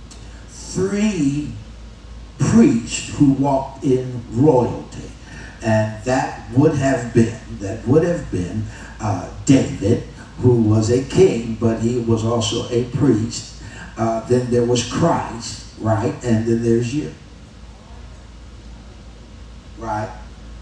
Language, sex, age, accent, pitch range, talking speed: English, male, 50-69, American, 105-130 Hz, 110 wpm